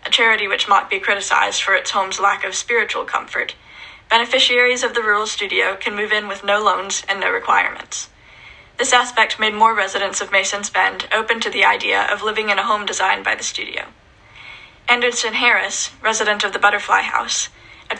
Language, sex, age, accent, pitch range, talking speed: English, female, 10-29, American, 200-235 Hz, 185 wpm